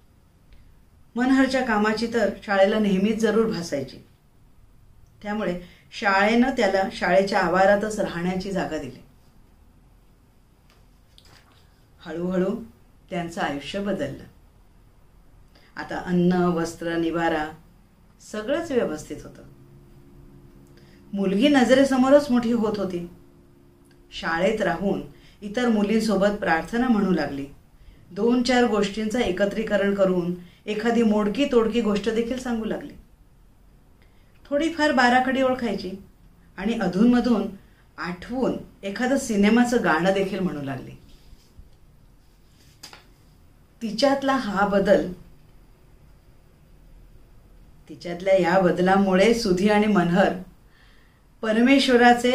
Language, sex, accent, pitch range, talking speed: Marathi, female, native, 170-225 Hz, 85 wpm